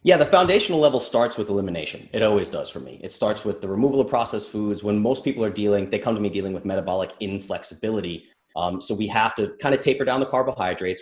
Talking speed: 240 wpm